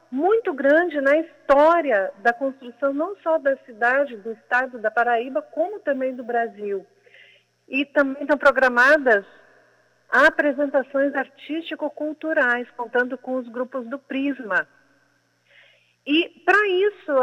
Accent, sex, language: Brazilian, female, Portuguese